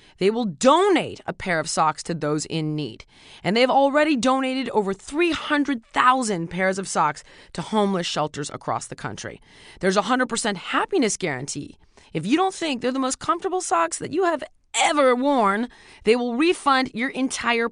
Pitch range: 185-280 Hz